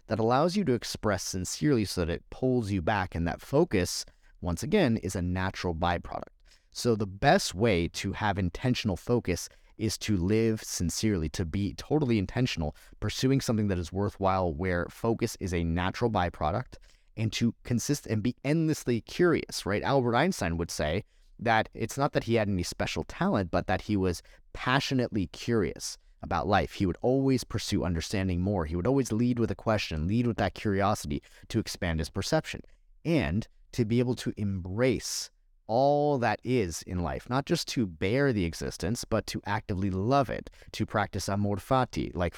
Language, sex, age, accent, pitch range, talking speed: English, male, 30-49, American, 90-120 Hz, 175 wpm